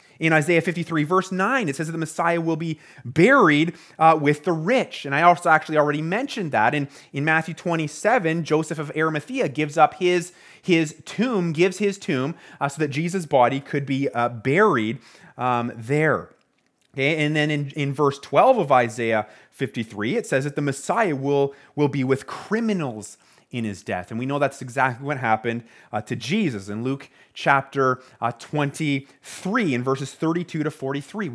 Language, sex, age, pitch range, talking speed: English, male, 30-49, 140-180 Hz, 180 wpm